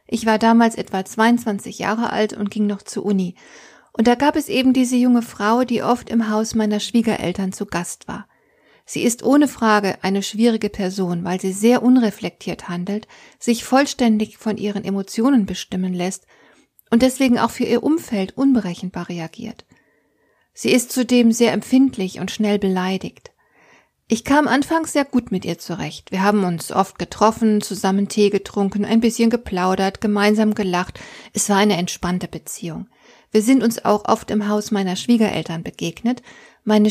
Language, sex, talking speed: German, female, 165 wpm